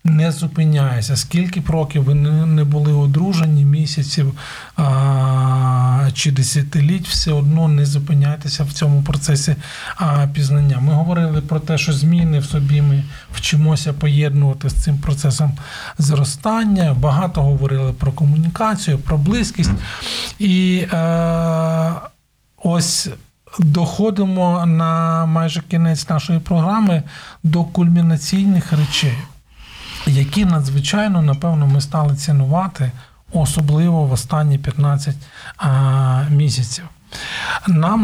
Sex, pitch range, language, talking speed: male, 140-165 Hz, Ukrainian, 105 wpm